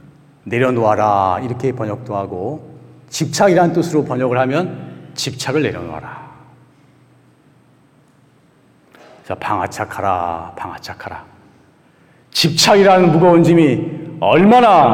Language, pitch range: Korean, 120-165 Hz